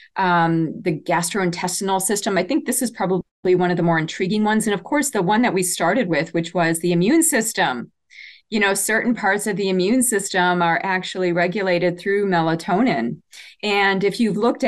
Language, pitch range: English, 175-205 Hz